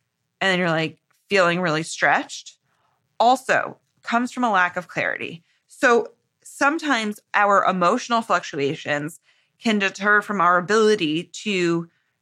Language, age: English, 20-39